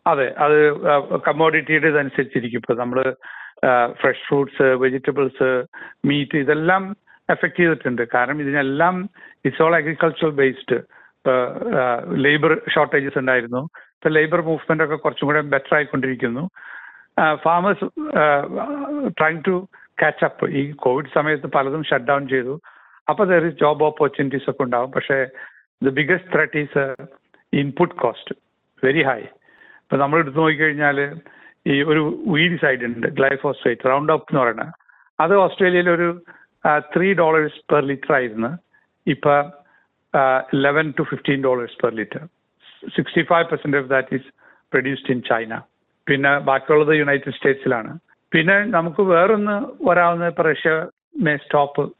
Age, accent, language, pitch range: 60-79, native, Malayalam, 135-165 Hz